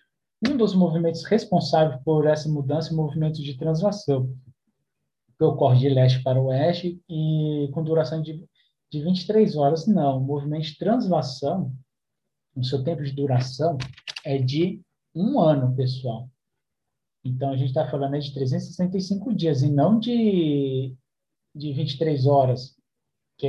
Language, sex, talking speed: Portuguese, male, 140 wpm